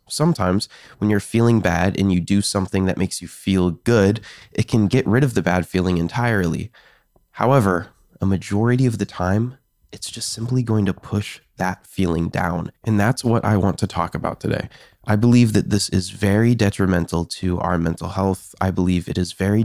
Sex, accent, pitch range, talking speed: male, American, 90-110 Hz, 190 wpm